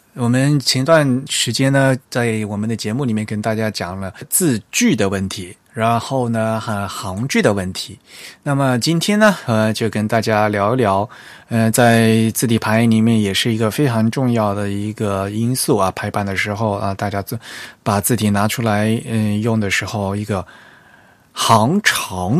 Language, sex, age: Chinese, male, 20-39